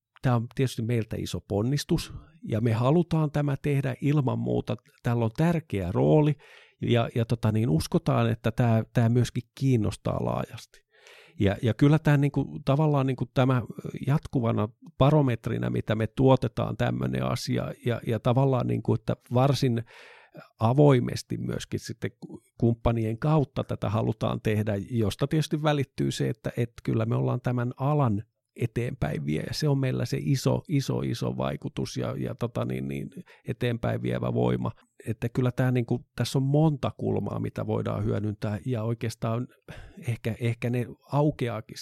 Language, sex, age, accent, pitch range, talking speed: Finnish, male, 50-69, native, 105-135 Hz, 150 wpm